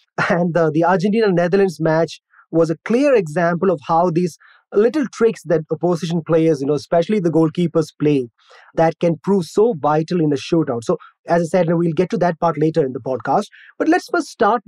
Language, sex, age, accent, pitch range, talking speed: English, male, 20-39, Indian, 155-195 Hz, 205 wpm